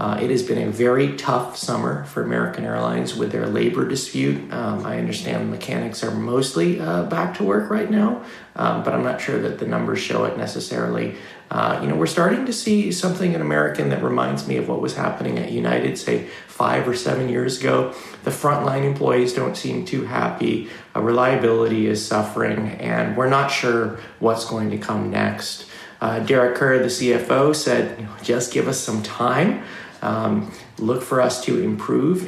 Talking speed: 190 wpm